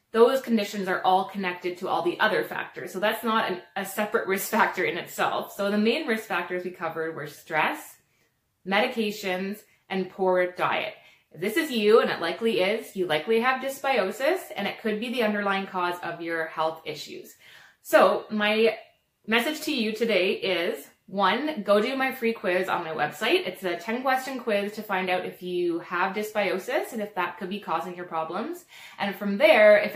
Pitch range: 185-225 Hz